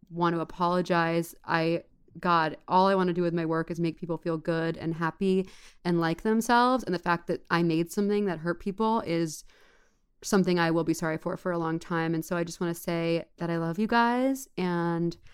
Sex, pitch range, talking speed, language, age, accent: female, 165-185 Hz, 225 wpm, English, 20-39, American